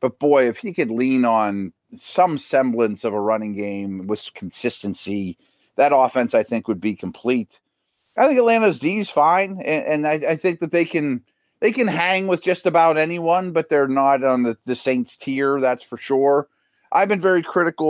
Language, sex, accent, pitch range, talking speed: English, male, American, 115-170 Hz, 190 wpm